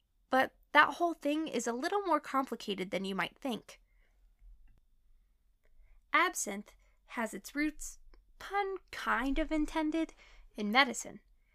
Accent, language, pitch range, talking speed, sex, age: American, English, 215-310 Hz, 120 wpm, female, 20-39